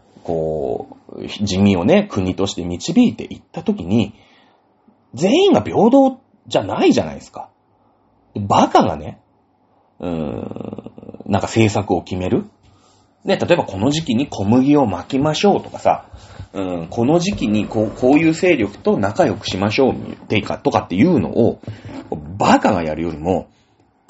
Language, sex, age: Japanese, male, 30-49